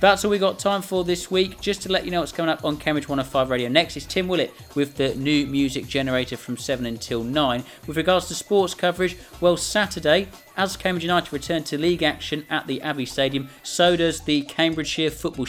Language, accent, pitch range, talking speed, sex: English, British, 130-165 Hz, 215 wpm, male